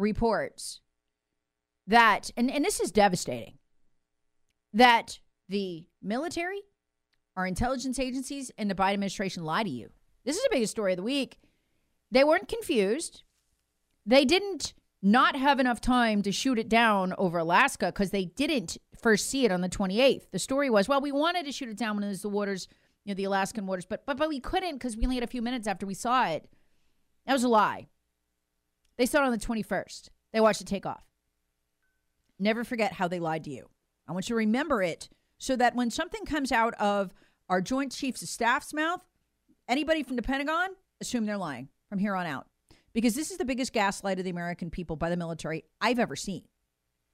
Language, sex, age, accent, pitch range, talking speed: English, female, 30-49, American, 180-260 Hz, 200 wpm